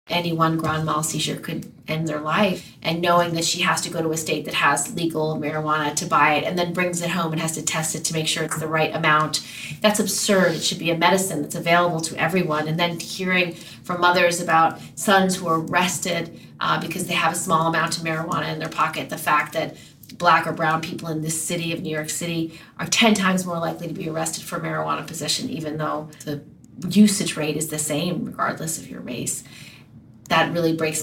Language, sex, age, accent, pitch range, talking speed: English, female, 30-49, American, 160-190 Hz, 225 wpm